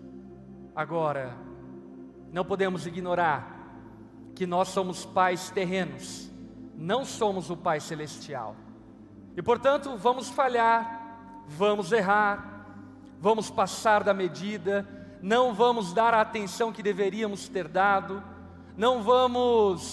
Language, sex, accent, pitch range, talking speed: Portuguese, male, Brazilian, 135-225 Hz, 105 wpm